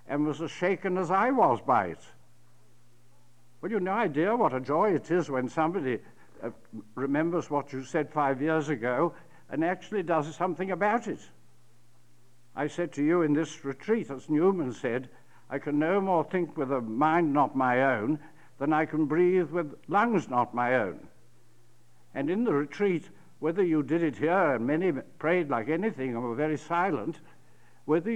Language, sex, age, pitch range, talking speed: English, male, 60-79, 130-175 Hz, 180 wpm